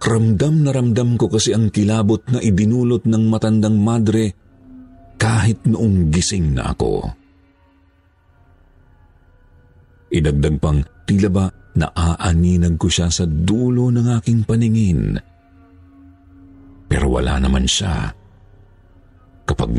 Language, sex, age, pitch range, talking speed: Filipino, male, 50-69, 85-105 Hz, 105 wpm